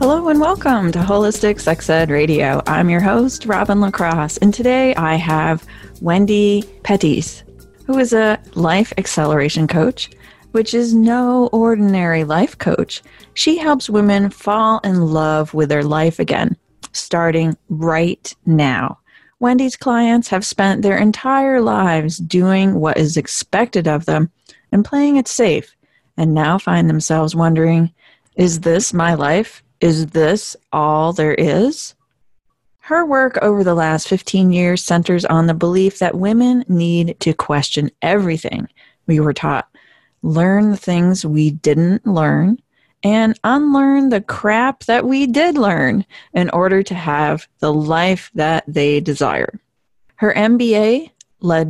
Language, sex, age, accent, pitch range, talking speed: English, female, 30-49, American, 160-220 Hz, 140 wpm